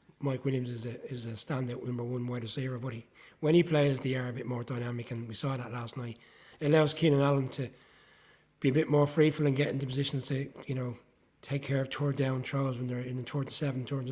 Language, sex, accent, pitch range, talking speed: English, male, British, 125-140 Hz, 255 wpm